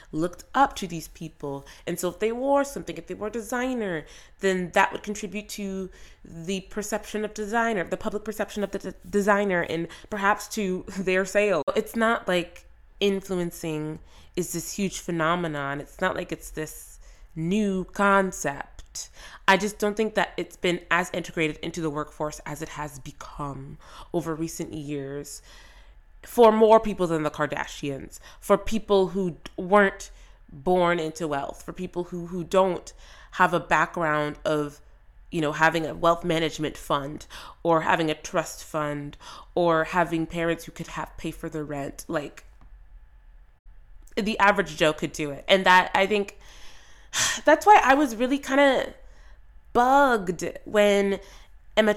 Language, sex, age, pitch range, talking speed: English, female, 20-39, 160-205 Hz, 155 wpm